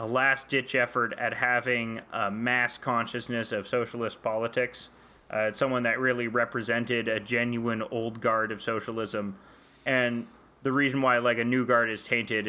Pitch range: 110-125 Hz